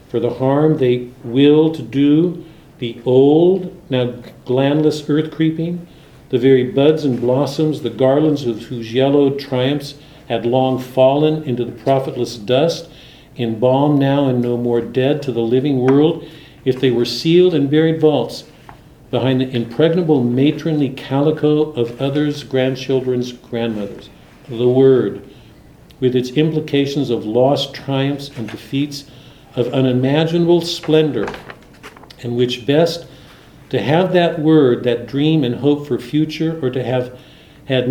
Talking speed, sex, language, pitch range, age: 135 wpm, male, English, 125-155 Hz, 50-69